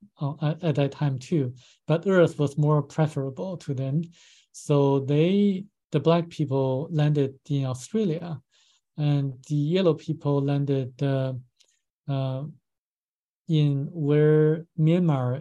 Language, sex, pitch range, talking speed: English, male, 130-155 Hz, 115 wpm